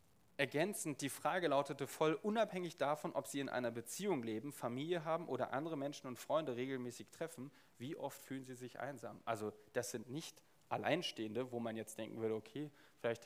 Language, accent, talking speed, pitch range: German, German, 180 wpm, 115-150 Hz